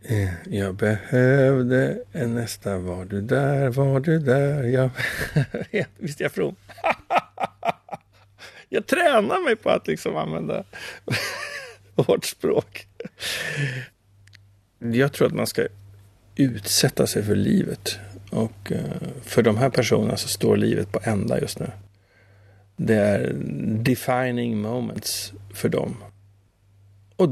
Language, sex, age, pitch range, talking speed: Swedish, male, 60-79, 100-125 Hz, 110 wpm